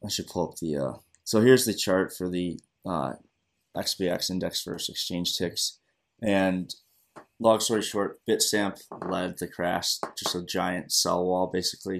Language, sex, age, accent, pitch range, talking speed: English, male, 20-39, American, 90-105 Hz, 160 wpm